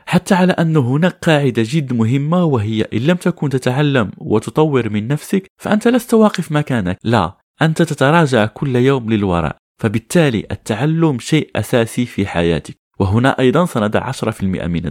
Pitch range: 110-160 Hz